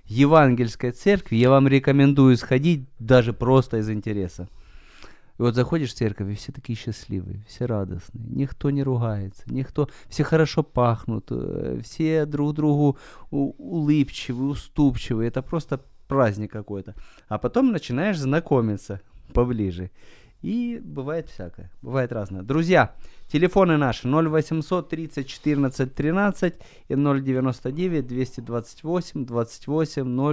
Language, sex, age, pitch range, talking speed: Ukrainian, male, 30-49, 110-145 Hz, 110 wpm